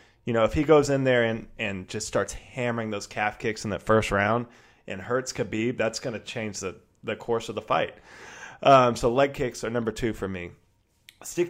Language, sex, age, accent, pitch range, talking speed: English, male, 20-39, American, 105-120 Hz, 220 wpm